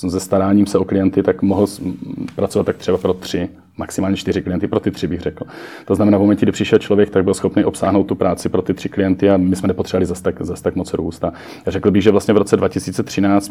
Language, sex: Czech, male